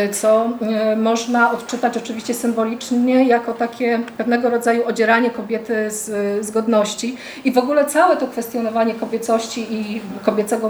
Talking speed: 125 wpm